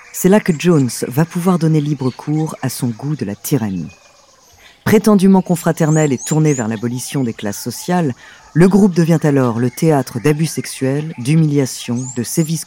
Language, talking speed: French, 165 wpm